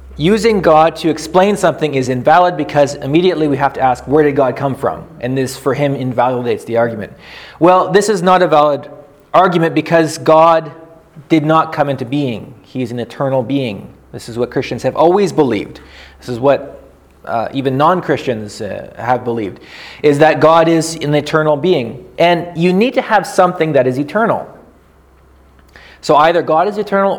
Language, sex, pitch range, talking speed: English, male, 140-170 Hz, 175 wpm